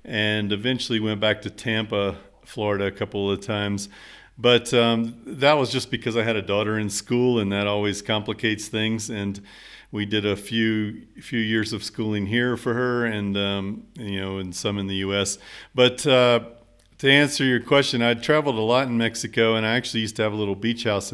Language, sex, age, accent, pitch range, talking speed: English, male, 40-59, American, 105-120 Hz, 200 wpm